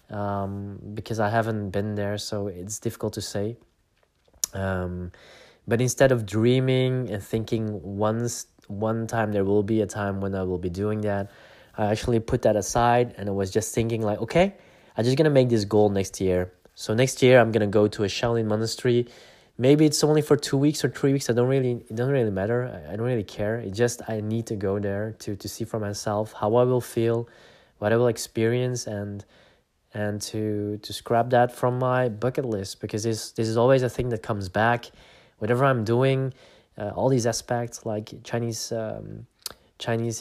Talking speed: 200 wpm